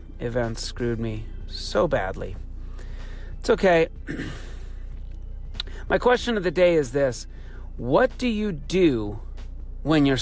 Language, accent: English, American